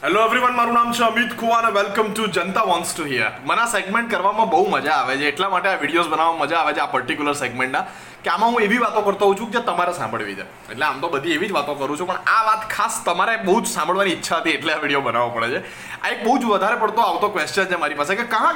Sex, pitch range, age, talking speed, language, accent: male, 165-230 Hz, 20-39, 190 wpm, Gujarati, native